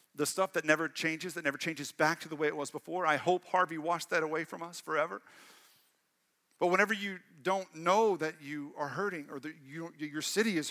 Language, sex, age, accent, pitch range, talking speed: English, male, 40-59, American, 135-180 Hz, 220 wpm